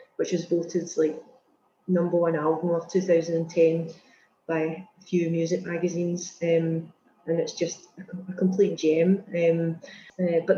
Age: 30-49